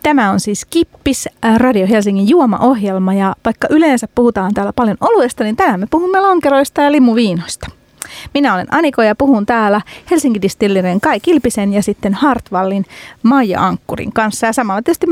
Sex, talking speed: female, 160 wpm